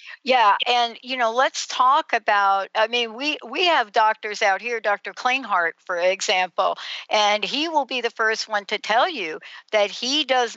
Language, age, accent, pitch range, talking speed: English, 60-79, American, 205-245 Hz, 180 wpm